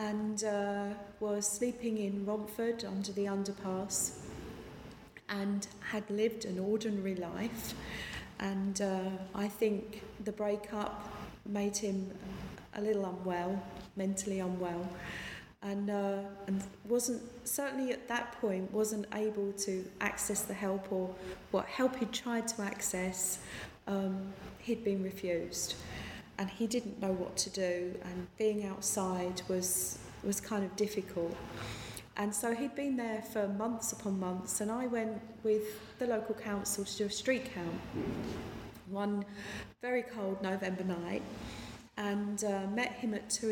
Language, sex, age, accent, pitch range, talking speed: English, female, 40-59, British, 190-220 Hz, 140 wpm